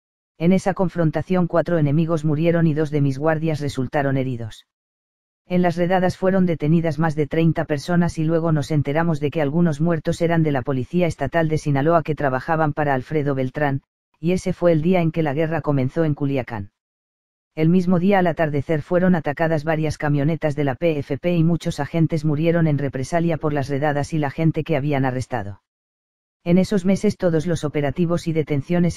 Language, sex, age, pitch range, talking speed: Spanish, female, 40-59, 145-170 Hz, 185 wpm